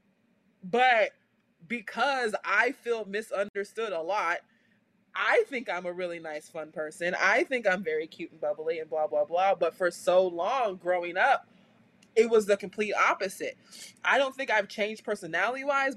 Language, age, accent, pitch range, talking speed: English, 20-39, American, 170-220 Hz, 160 wpm